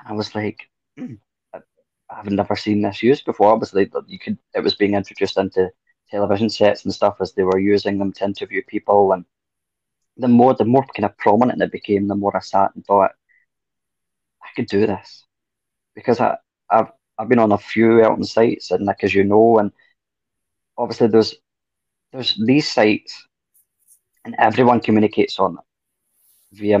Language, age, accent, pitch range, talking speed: English, 20-39, British, 100-110 Hz, 175 wpm